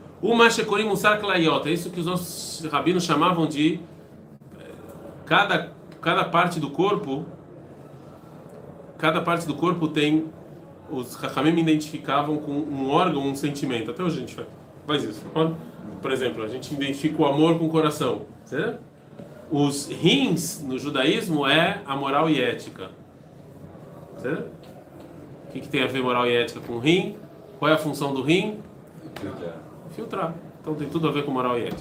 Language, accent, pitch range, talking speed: Portuguese, Brazilian, 145-180 Hz, 135 wpm